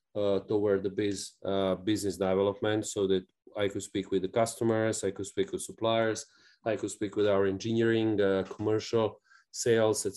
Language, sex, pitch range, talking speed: English, male, 100-115 Hz, 170 wpm